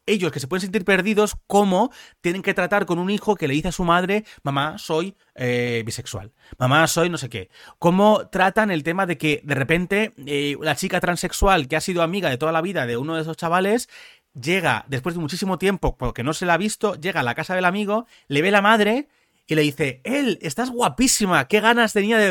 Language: Spanish